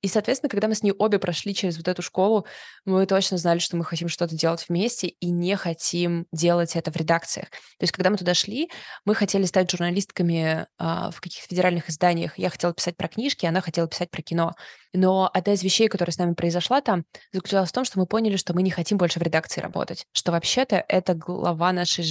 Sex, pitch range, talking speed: female, 170-195 Hz, 215 wpm